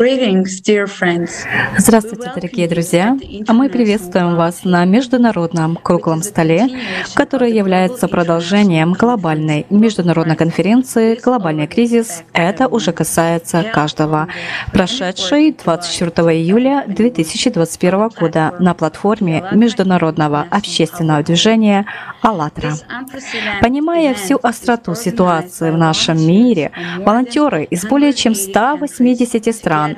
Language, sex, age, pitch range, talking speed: Russian, female, 20-39, 165-230 Hz, 90 wpm